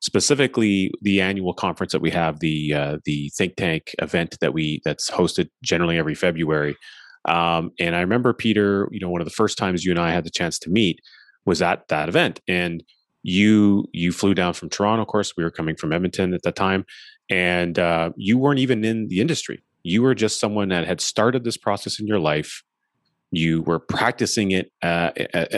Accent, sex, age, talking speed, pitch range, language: American, male, 30-49, 200 wpm, 85-105 Hz, English